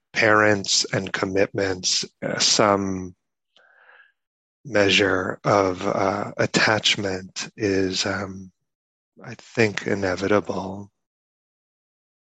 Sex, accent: male, American